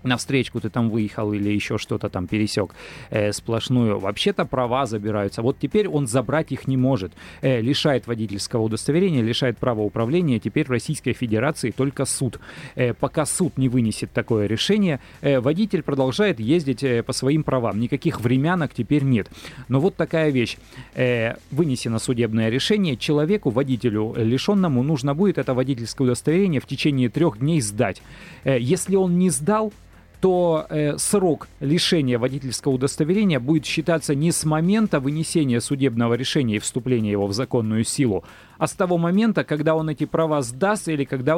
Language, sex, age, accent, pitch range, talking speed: Russian, male, 30-49, native, 115-155 Hz, 160 wpm